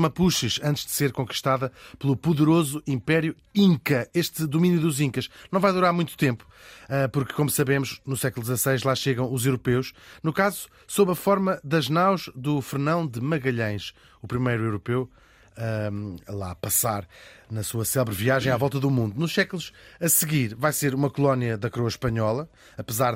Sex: male